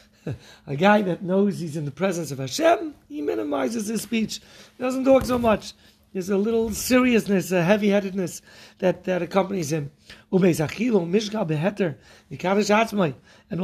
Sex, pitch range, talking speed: male, 155-210 Hz, 130 wpm